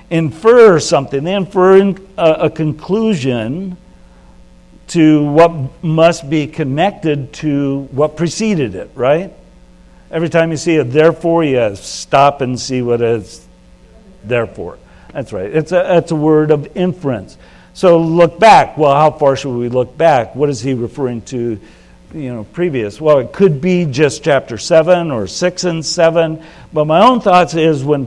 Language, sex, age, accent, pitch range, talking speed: English, male, 60-79, American, 115-160 Hz, 160 wpm